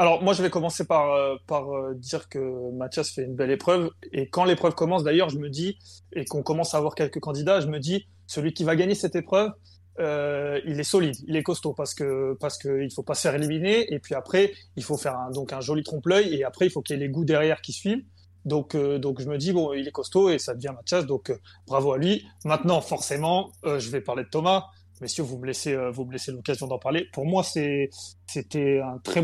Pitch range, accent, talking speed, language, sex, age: 135-165 Hz, French, 250 wpm, French, male, 30-49